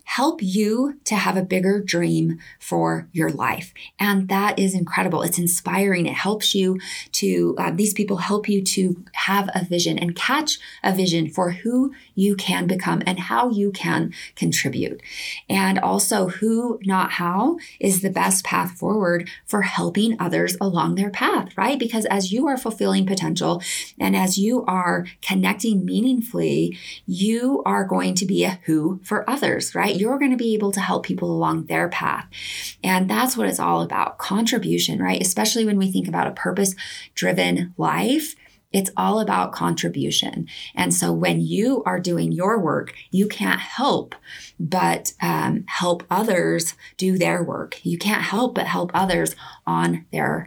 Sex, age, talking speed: female, 20-39, 165 wpm